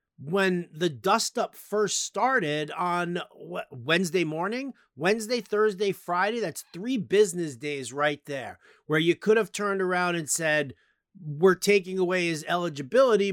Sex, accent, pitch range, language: male, American, 165-205 Hz, English